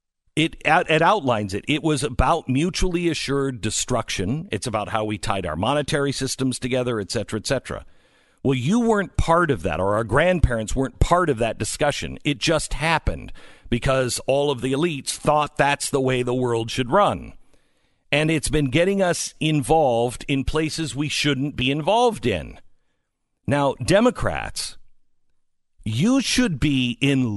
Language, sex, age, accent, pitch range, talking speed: English, male, 50-69, American, 120-160 Hz, 160 wpm